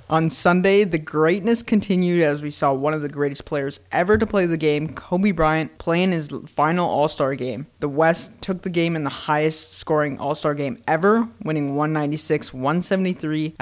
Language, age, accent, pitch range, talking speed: English, 20-39, American, 150-180 Hz, 175 wpm